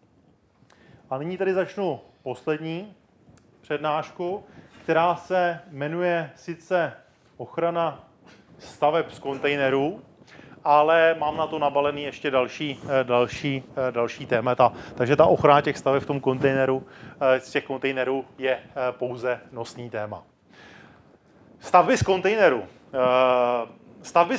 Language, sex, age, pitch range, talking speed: Czech, male, 30-49, 130-160 Hz, 105 wpm